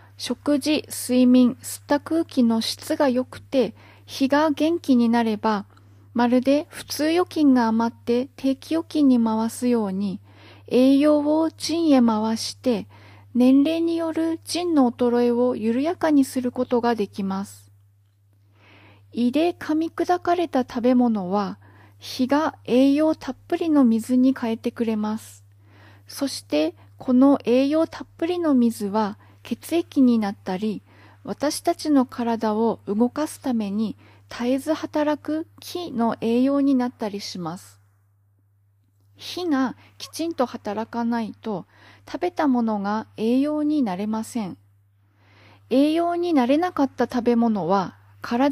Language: Japanese